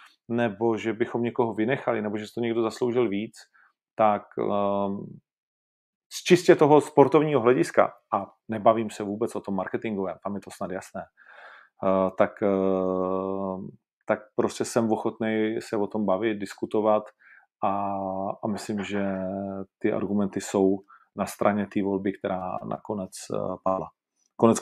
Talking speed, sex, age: 130 wpm, male, 40-59